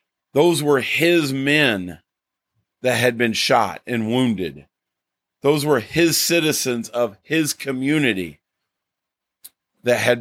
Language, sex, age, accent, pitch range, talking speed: English, male, 40-59, American, 115-160 Hz, 110 wpm